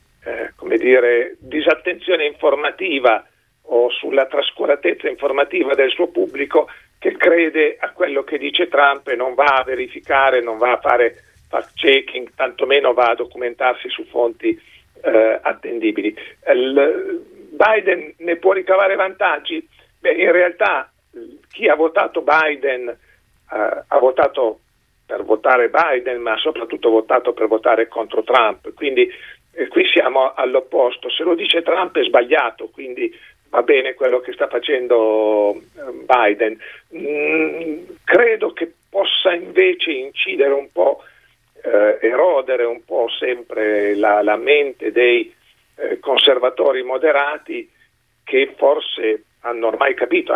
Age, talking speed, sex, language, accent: 50-69, 130 wpm, male, Italian, native